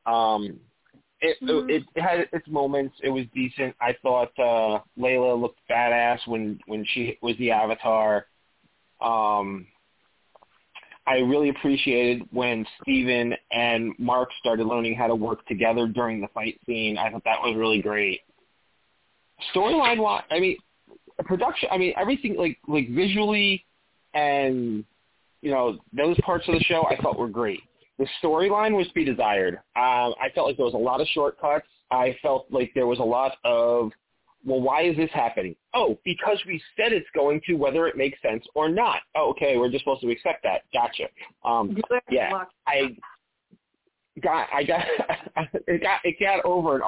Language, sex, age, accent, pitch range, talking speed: English, male, 20-39, American, 120-175 Hz, 170 wpm